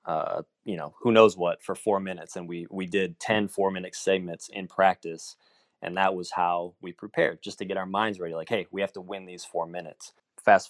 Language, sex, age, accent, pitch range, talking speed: English, male, 20-39, American, 85-100 Hz, 225 wpm